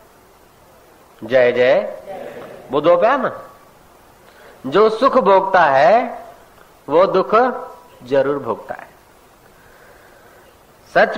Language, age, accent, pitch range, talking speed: Hindi, 50-69, native, 180-240 Hz, 70 wpm